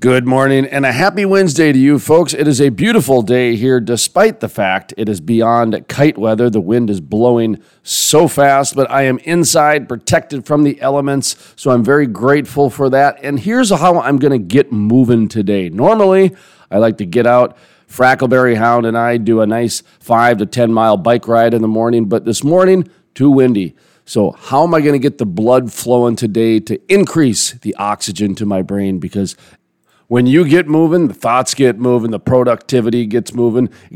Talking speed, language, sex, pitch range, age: 195 wpm, English, male, 115-145 Hz, 40-59